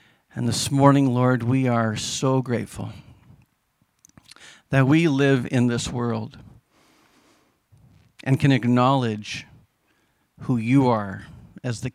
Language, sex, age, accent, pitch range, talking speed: English, male, 50-69, American, 120-145 Hz, 110 wpm